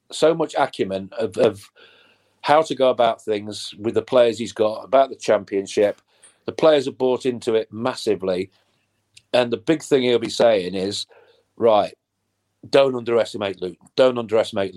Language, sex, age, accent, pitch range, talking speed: English, male, 40-59, British, 110-135 Hz, 160 wpm